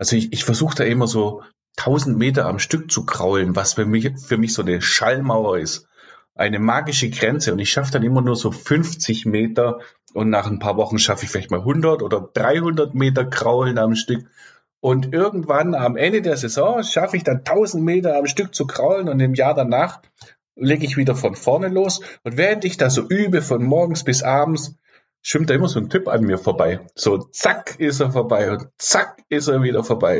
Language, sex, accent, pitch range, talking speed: German, male, German, 110-150 Hz, 205 wpm